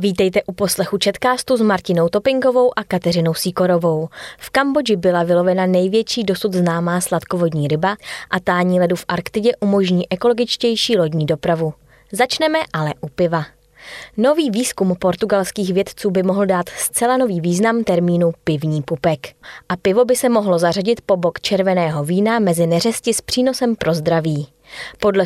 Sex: female